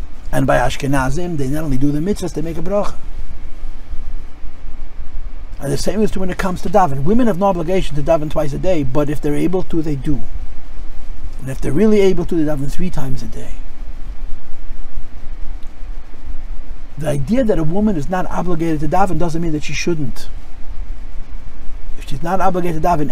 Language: English